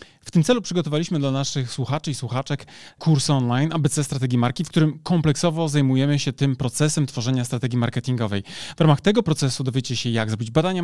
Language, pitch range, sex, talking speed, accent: Polish, 130-165 Hz, male, 185 wpm, native